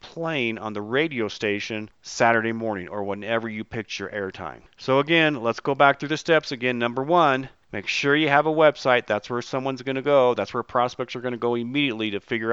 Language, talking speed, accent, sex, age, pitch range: English, 220 wpm, American, male, 40-59, 115-140 Hz